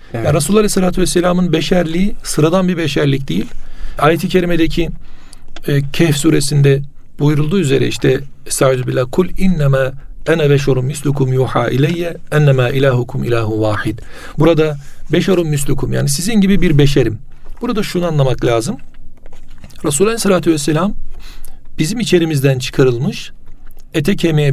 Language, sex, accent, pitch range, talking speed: Turkish, male, native, 135-170 Hz, 125 wpm